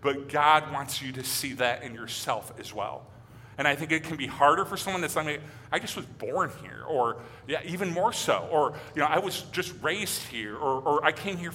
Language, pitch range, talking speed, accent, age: English, 120-150 Hz, 235 wpm, American, 40-59